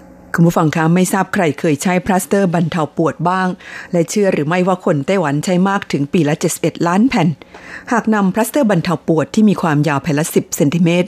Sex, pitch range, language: female, 150-185 Hz, Thai